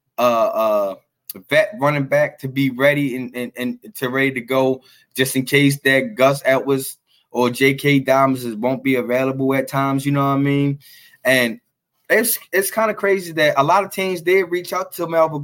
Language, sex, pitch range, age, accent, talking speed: English, male, 135-175 Hz, 20-39, American, 195 wpm